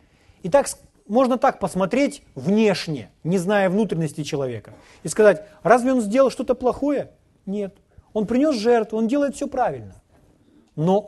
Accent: native